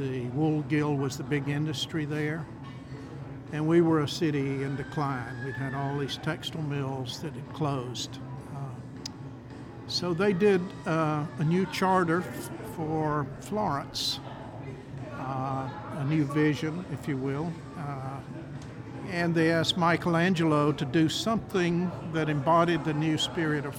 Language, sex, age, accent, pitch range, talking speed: English, male, 60-79, American, 135-155 Hz, 145 wpm